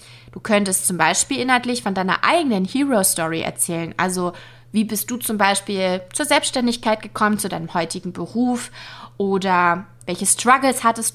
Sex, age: female, 20-39